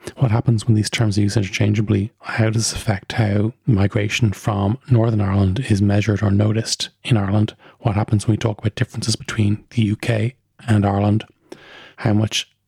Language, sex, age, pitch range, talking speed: English, male, 30-49, 105-115 Hz, 175 wpm